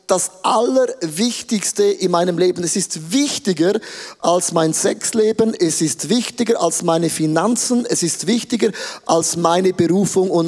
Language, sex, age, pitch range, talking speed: German, male, 30-49, 175-215 Hz, 135 wpm